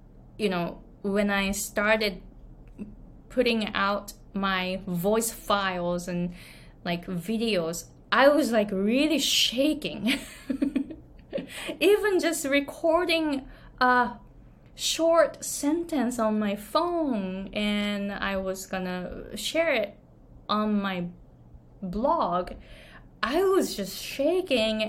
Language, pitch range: Japanese, 200-275 Hz